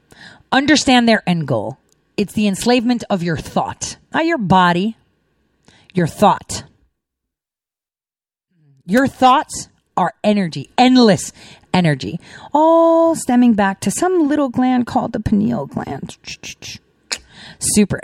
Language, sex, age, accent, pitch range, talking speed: English, female, 40-59, American, 185-265 Hz, 110 wpm